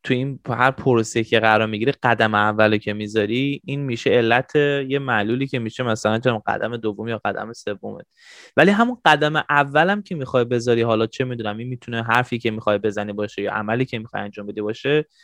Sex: male